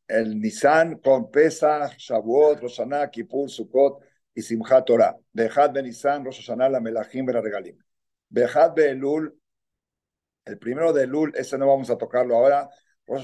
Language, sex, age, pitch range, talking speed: Spanish, male, 50-69, 120-145 Hz, 150 wpm